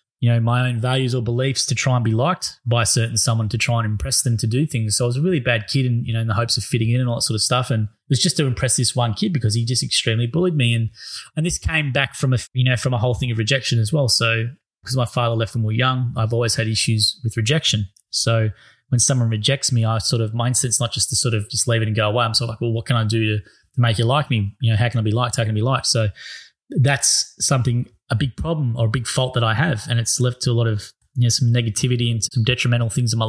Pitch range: 115-135 Hz